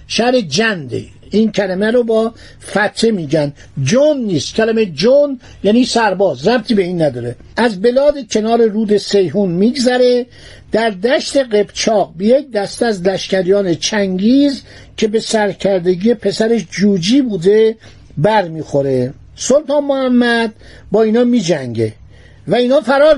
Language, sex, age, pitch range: Persian, male, 50-69, 180-245 Hz